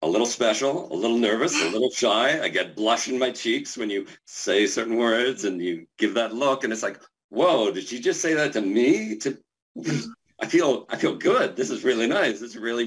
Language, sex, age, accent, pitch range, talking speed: English, male, 50-69, American, 110-160 Hz, 230 wpm